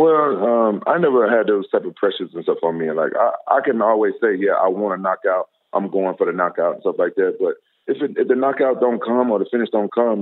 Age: 30-49